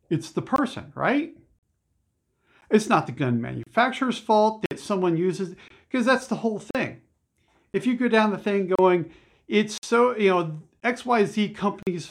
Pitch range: 125-195 Hz